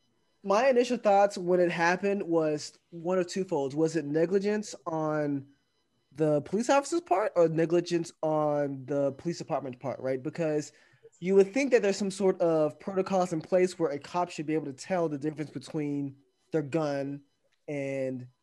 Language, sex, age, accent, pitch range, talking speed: English, male, 20-39, American, 140-185 Hz, 175 wpm